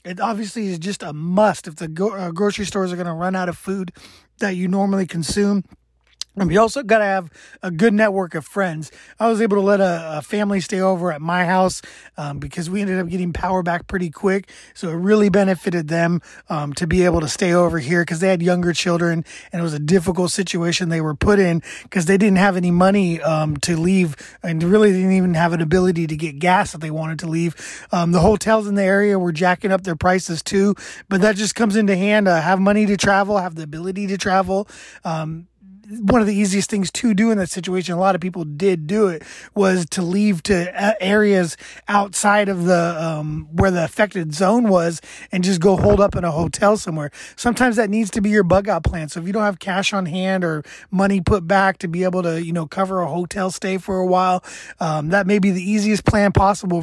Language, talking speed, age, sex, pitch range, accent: English, 230 wpm, 30-49, male, 170-200 Hz, American